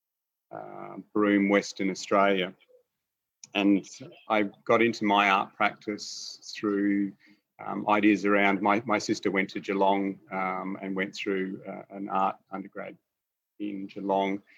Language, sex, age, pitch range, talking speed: English, male, 40-59, 90-100 Hz, 130 wpm